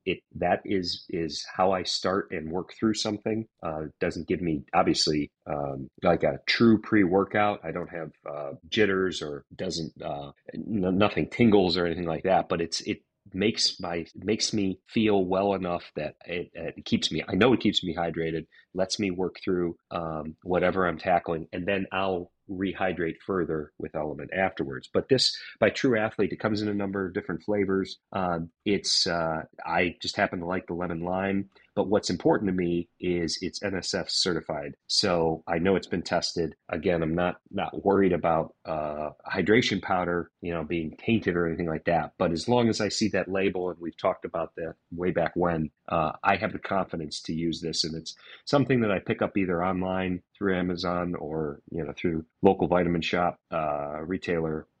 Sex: male